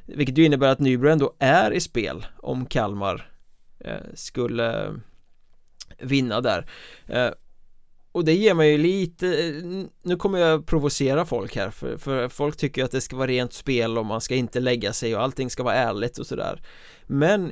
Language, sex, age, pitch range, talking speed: Swedish, male, 20-39, 125-145 Hz, 165 wpm